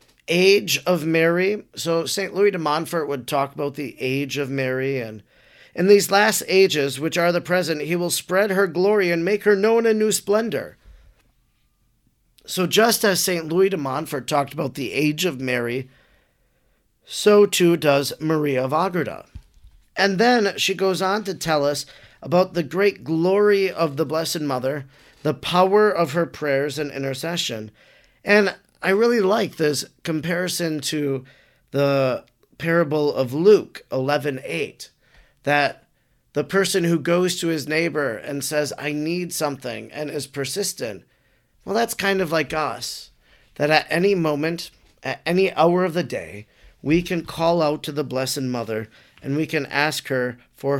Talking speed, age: 160 wpm, 40-59